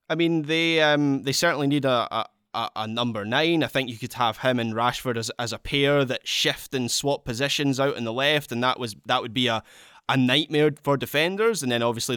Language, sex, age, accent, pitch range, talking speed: English, male, 10-29, British, 115-145 Hz, 230 wpm